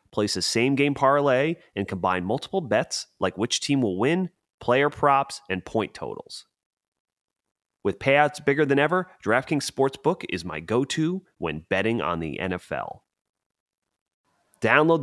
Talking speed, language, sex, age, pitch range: 135 wpm, English, male, 30-49, 105-140 Hz